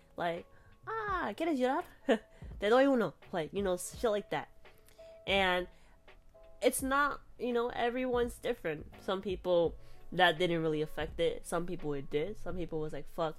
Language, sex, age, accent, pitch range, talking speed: English, female, 20-39, American, 150-200 Hz, 165 wpm